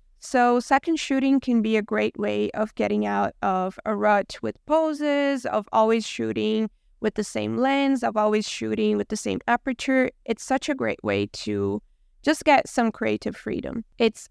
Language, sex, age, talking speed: English, female, 20-39, 175 wpm